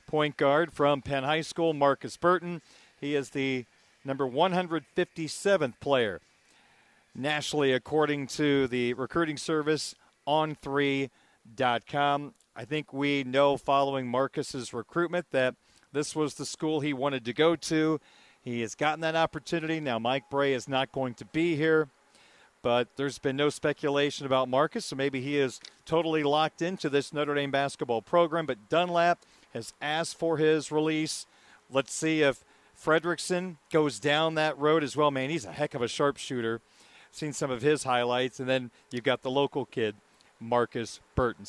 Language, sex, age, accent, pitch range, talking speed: English, male, 40-59, American, 135-160 Hz, 160 wpm